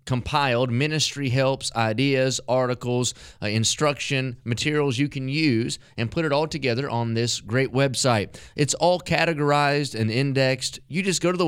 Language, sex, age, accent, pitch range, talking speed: English, male, 30-49, American, 120-150 Hz, 155 wpm